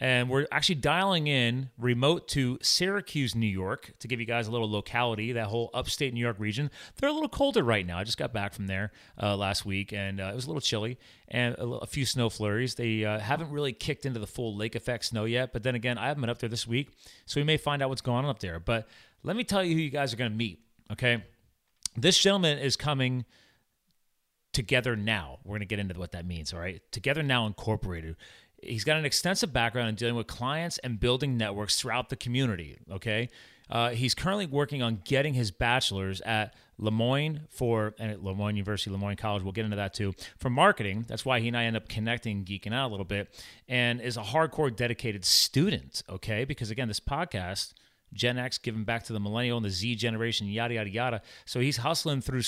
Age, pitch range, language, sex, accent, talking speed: 30-49, 105-130 Hz, English, male, American, 225 wpm